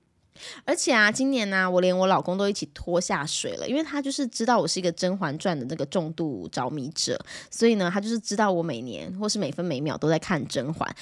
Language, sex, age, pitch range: Chinese, female, 20-39, 175-245 Hz